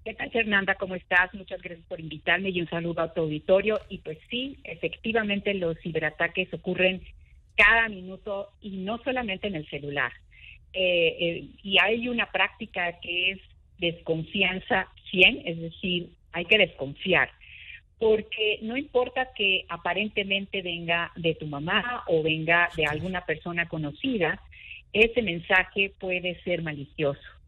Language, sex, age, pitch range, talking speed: Spanish, female, 50-69, 170-215 Hz, 140 wpm